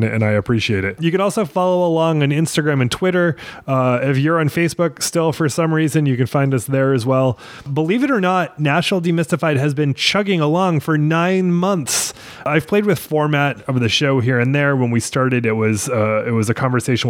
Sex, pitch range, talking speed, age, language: male, 115-150 Hz, 220 wpm, 20-39, English